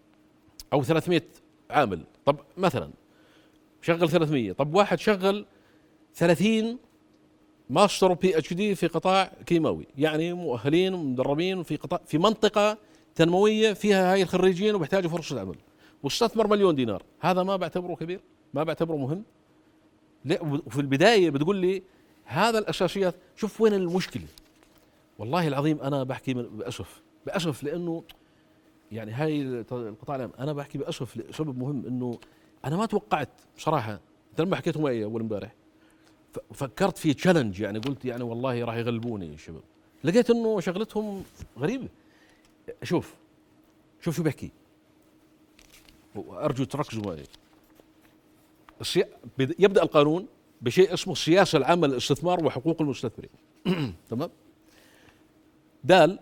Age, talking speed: 50-69, 120 wpm